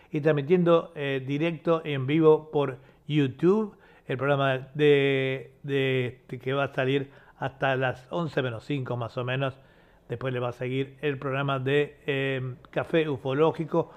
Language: Spanish